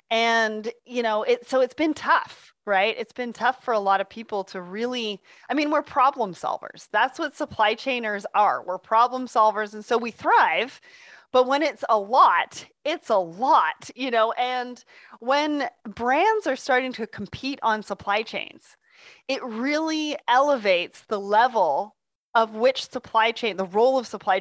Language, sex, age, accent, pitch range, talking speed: English, female, 30-49, American, 205-265 Hz, 165 wpm